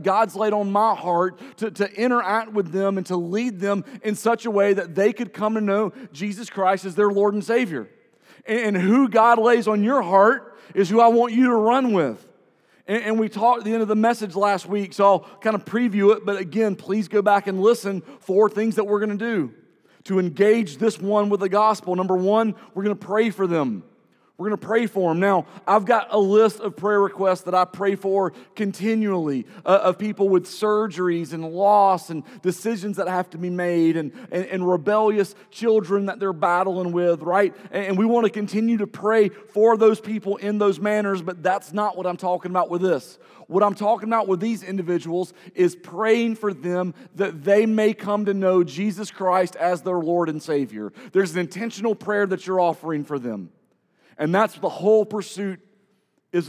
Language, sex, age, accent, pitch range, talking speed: English, male, 40-59, American, 185-215 Hz, 210 wpm